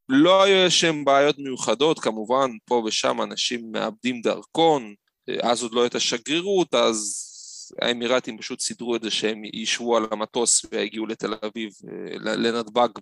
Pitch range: 110-145 Hz